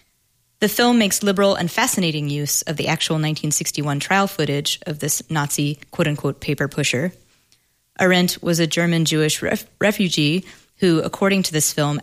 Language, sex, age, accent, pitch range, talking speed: English, female, 20-39, American, 150-180 Hz, 145 wpm